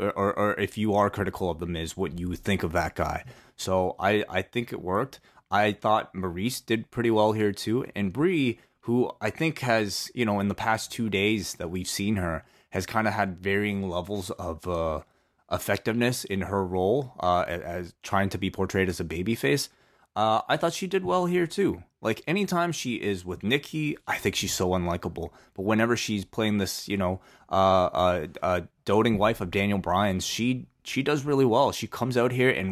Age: 20-39